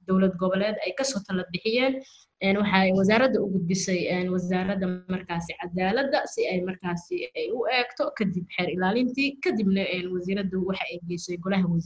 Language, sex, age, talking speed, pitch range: English, female, 20-39, 115 wpm, 185-230 Hz